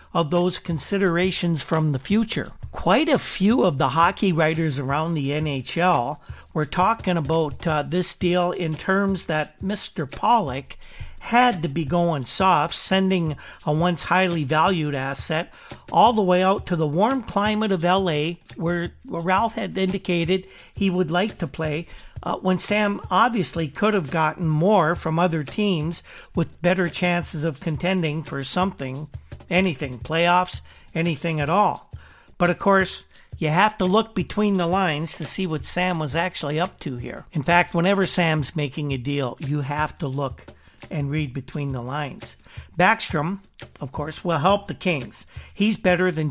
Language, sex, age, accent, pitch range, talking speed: English, male, 50-69, American, 150-185 Hz, 160 wpm